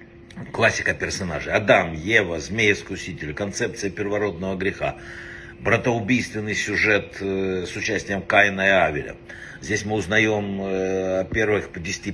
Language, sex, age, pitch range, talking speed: Russian, male, 60-79, 100-140 Hz, 105 wpm